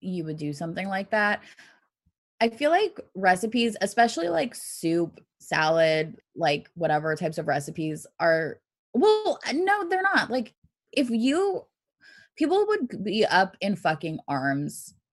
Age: 20-39